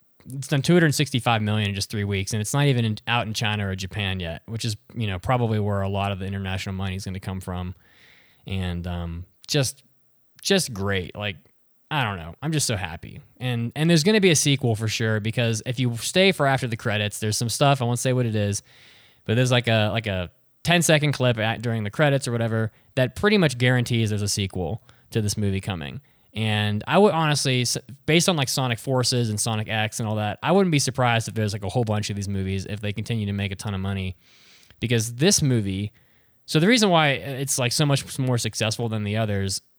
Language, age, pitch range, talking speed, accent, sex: English, 20-39, 100-130 Hz, 235 wpm, American, male